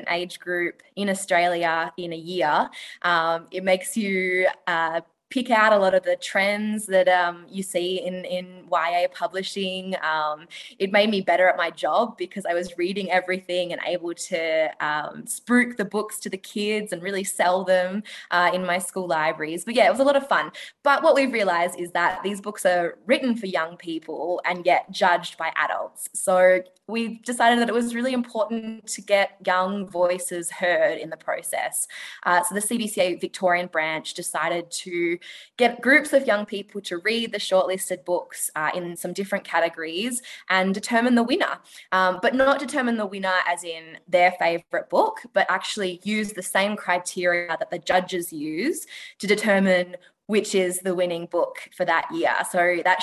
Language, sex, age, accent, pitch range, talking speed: English, female, 20-39, Australian, 175-210 Hz, 180 wpm